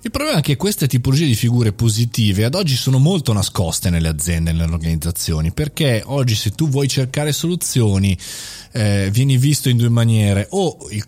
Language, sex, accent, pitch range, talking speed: Italian, male, native, 100-135 Hz, 185 wpm